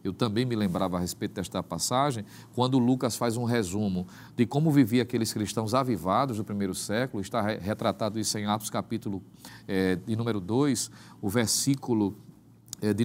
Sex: male